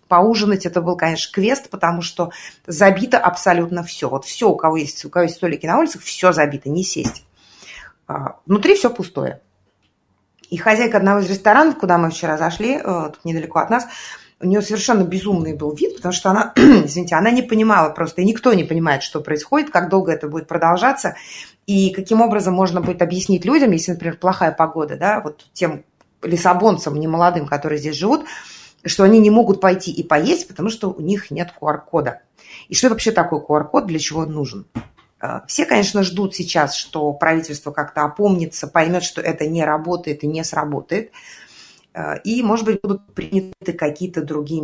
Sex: female